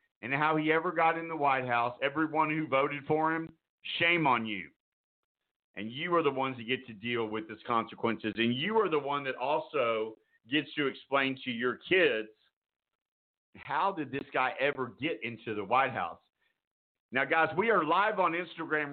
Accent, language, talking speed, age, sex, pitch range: American, English, 185 wpm, 50-69, male, 125-155 Hz